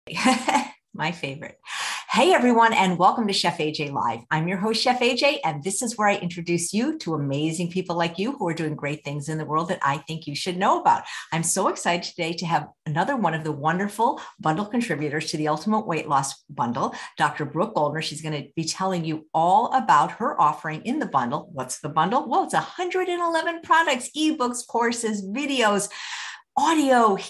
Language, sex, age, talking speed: English, female, 50-69, 195 wpm